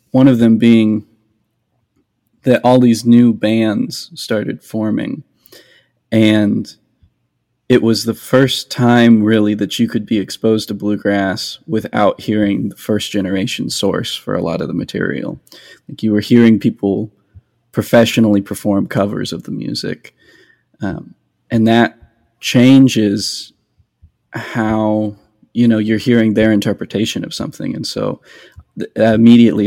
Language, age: English, 20-39